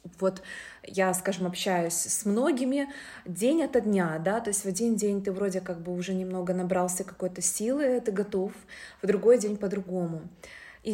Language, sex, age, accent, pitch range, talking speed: Russian, female, 20-39, native, 185-225 Hz, 170 wpm